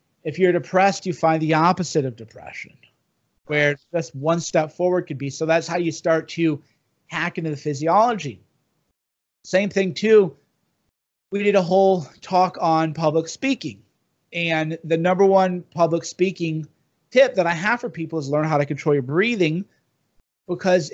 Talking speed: 165 wpm